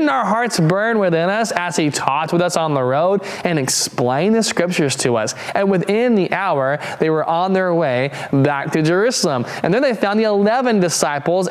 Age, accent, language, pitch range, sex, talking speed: 20-39, American, English, 135-185 Hz, male, 205 wpm